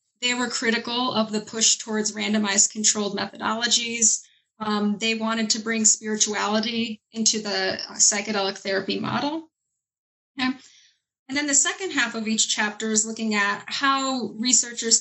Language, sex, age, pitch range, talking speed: English, female, 20-39, 205-230 Hz, 135 wpm